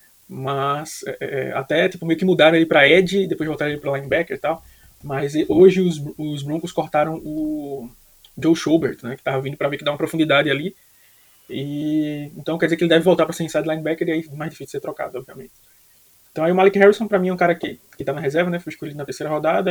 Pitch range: 145-180 Hz